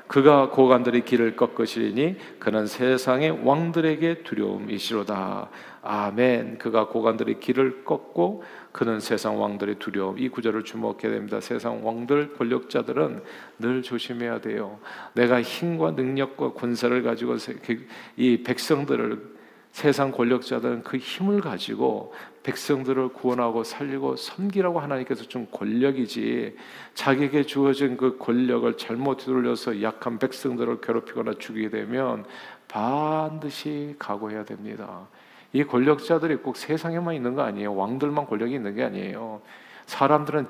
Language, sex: Korean, male